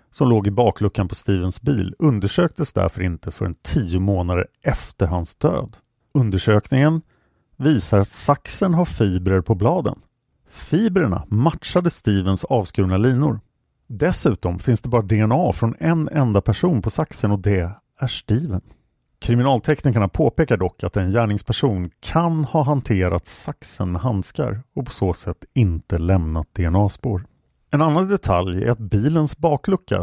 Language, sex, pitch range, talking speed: English, male, 95-135 Hz, 140 wpm